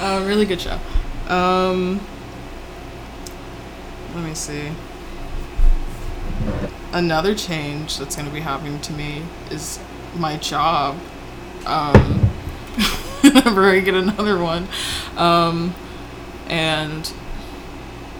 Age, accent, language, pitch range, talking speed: 20-39, American, English, 145-180 Hz, 90 wpm